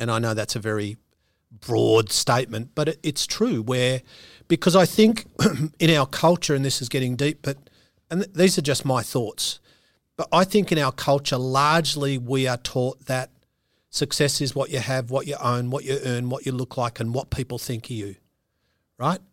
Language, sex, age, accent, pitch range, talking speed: English, male, 40-59, Australian, 130-155 Hz, 210 wpm